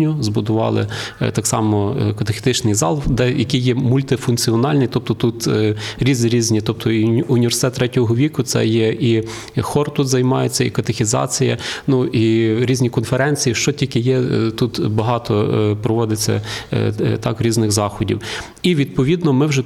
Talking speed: 130 wpm